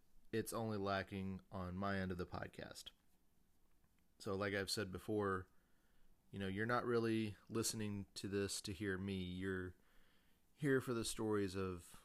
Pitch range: 95-100 Hz